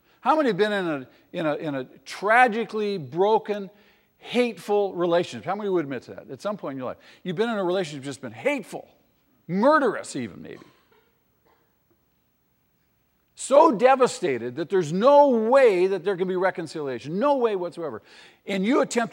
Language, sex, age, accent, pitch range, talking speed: English, male, 50-69, American, 140-225 Hz, 165 wpm